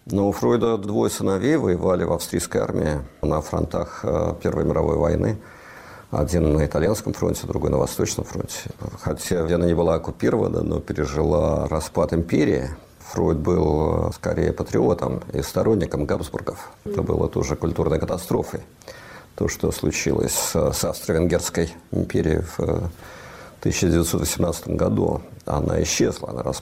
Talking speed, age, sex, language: 115 wpm, 50-69, male, Russian